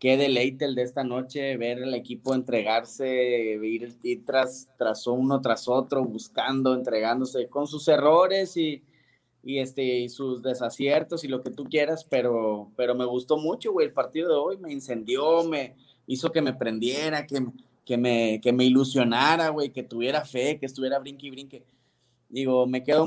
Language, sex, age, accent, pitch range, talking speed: Spanish, male, 20-39, Mexican, 125-150 Hz, 175 wpm